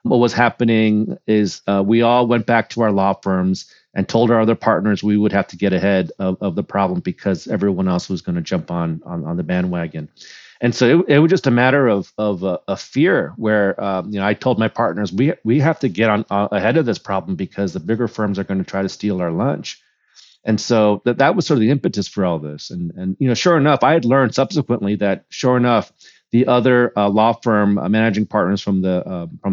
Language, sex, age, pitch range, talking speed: English, male, 40-59, 100-120 Hz, 245 wpm